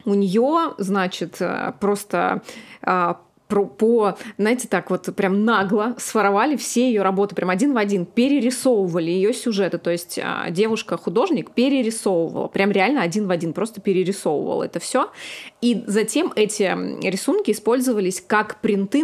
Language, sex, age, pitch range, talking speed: Russian, female, 20-39, 185-230 Hz, 130 wpm